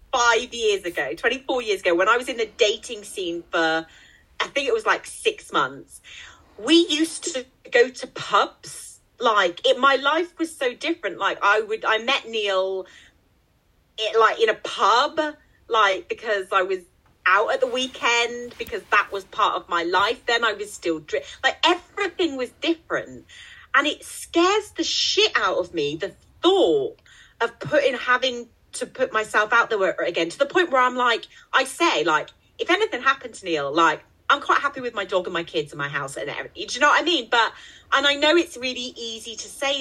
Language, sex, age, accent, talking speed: English, female, 40-59, British, 190 wpm